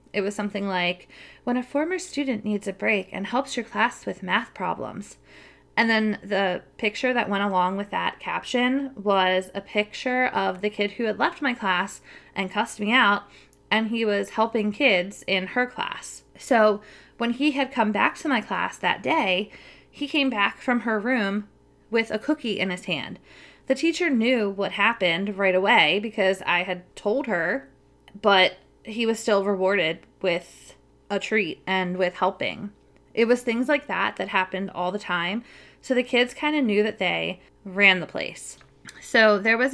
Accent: American